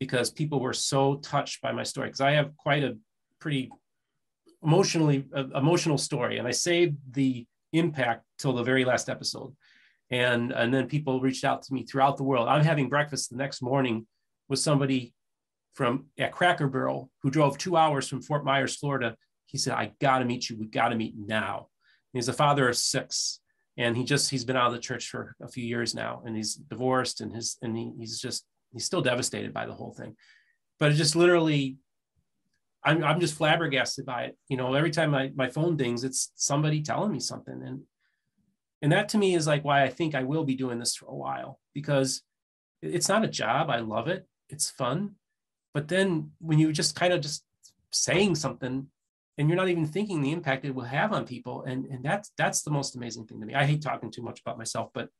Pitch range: 125-150 Hz